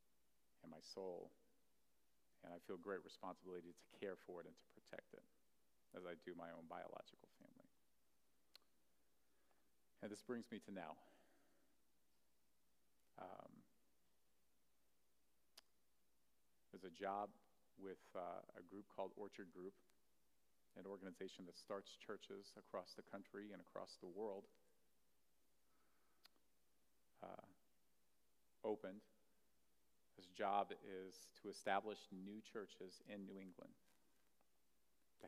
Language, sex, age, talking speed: English, male, 40-59, 110 wpm